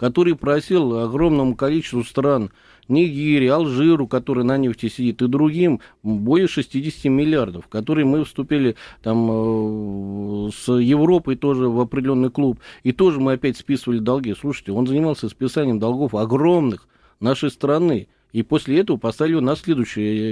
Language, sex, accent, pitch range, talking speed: Russian, male, native, 115-150 Hz, 135 wpm